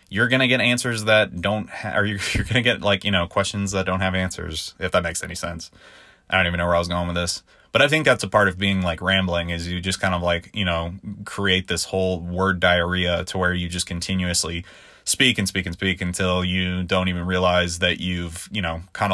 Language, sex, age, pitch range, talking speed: English, male, 20-39, 90-110 Hz, 250 wpm